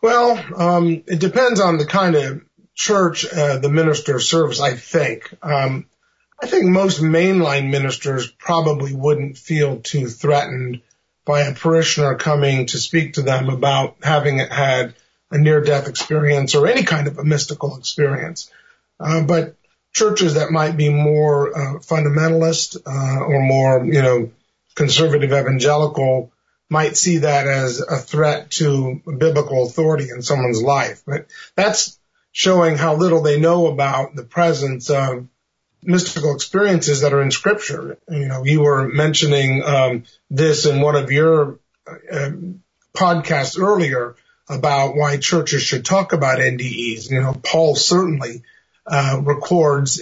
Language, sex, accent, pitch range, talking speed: English, male, American, 140-165 Hz, 145 wpm